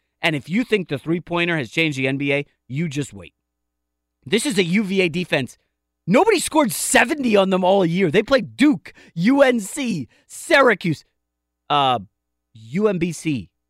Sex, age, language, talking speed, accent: male, 30-49, English, 140 wpm, American